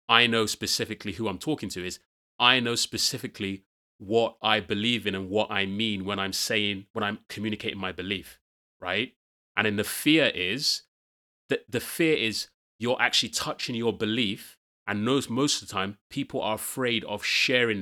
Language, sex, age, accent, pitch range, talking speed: English, male, 30-49, British, 95-120 Hz, 180 wpm